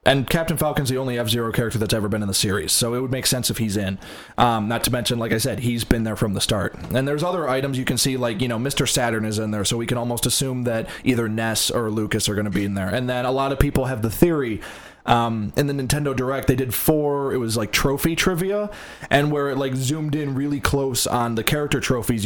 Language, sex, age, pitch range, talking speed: English, male, 20-39, 110-135 Hz, 265 wpm